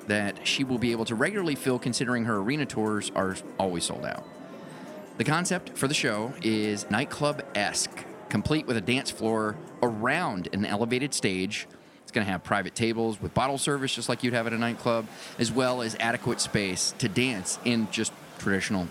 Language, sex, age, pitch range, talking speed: English, male, 30-49, 105-130 Hz, 185 wpm